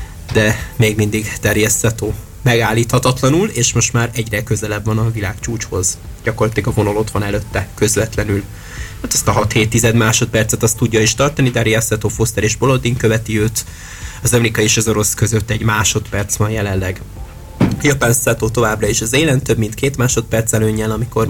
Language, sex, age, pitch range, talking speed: Hungarian, male, 20-39, 110-120 Hz, 165 wpm